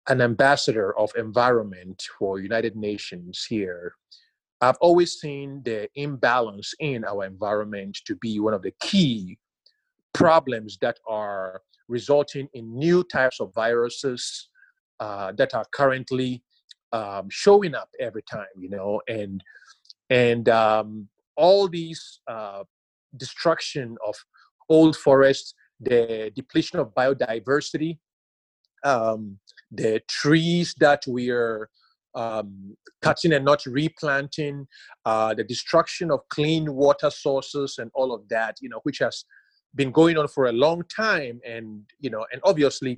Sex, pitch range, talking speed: male, 110-160 Hz, 125 wpm